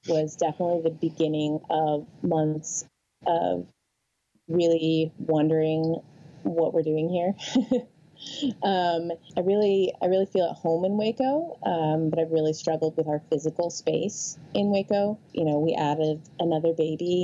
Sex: female